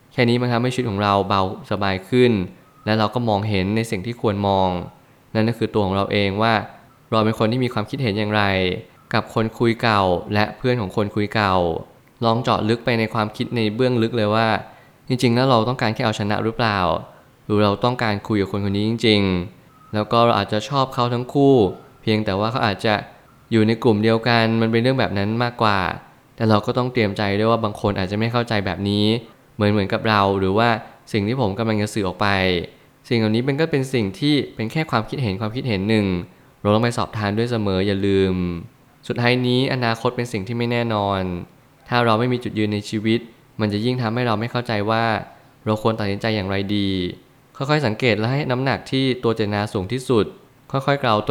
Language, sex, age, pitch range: Thai, male, 20-39, 105-125 Hz